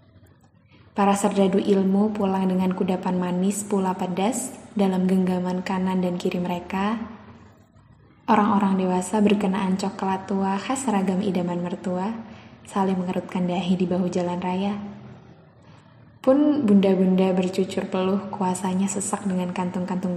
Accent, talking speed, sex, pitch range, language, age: native, 115 wpm, female, 185-215 Hz, Indonesian, 10-29